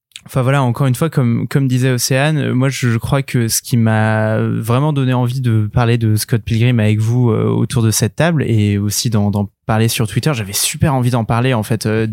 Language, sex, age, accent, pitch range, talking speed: French, male, 20-39, French, 115-135 Hz, 230 wpm